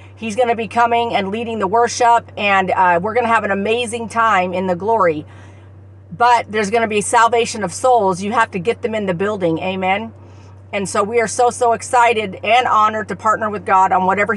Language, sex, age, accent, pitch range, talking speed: English, female, 50-69, American, 190-245 Hz, 220 wpm